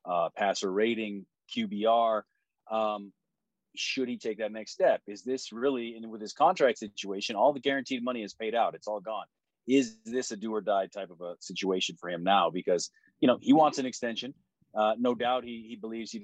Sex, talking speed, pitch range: male, 205 wpm, 100-115 Hz